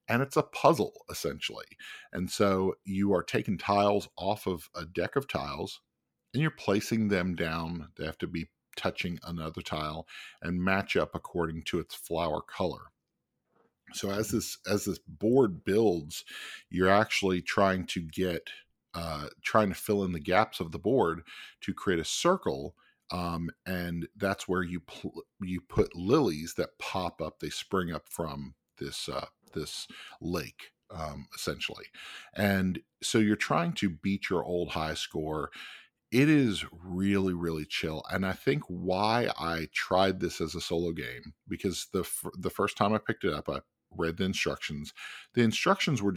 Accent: American